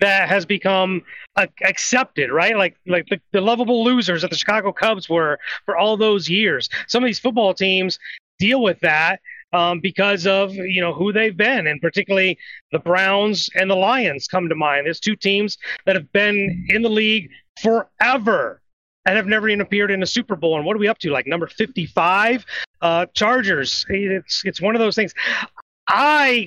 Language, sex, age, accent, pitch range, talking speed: English, male, 30-49, American, 170-210 Hz, 190 wpm